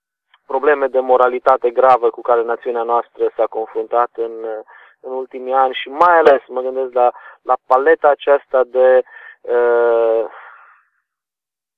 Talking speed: 125 wpm